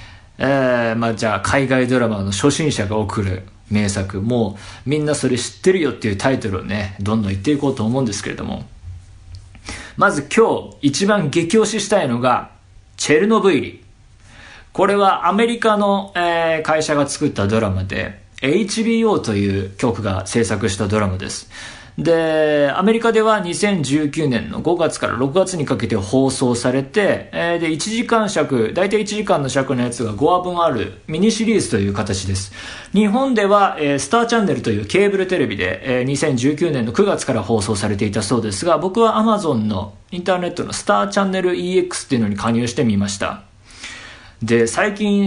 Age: 40-59